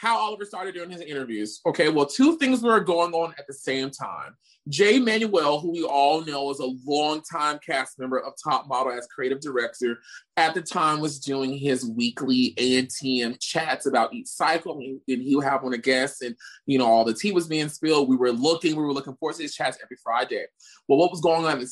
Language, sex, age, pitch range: English, male, 20-39, 130-170 Hz